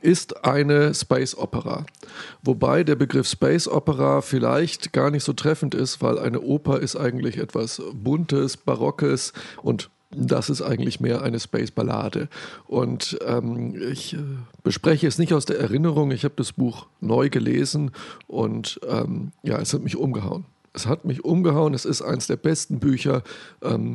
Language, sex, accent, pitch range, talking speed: German, male, German, 130-160 Hz, 165 wpm